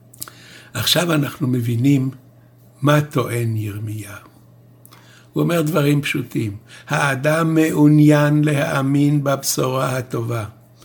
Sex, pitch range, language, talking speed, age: male, 120-155 Hz, Hebrew, 85 wpm, 60-79